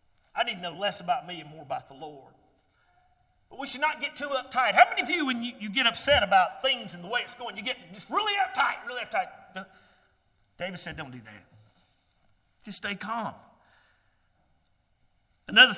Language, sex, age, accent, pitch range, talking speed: English, male, 40-59, American, 160-245 Hz, 195 wpm